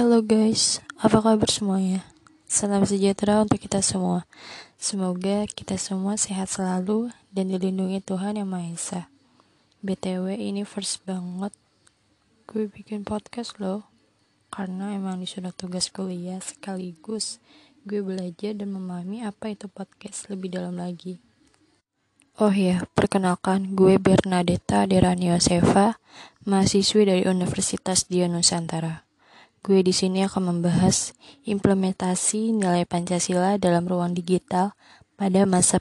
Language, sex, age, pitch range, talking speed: Indonesian, female, 20-39, 185-210 Hz, 110 wpm